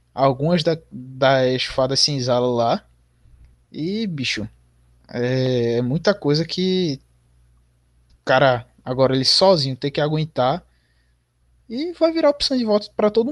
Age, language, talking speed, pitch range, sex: 20-39, Portuguese, 125 wpm, 120-185 Hz, male